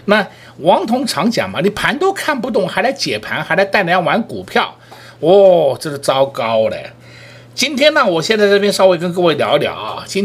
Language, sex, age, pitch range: Chinese, male, 50-69, 135-215 Hz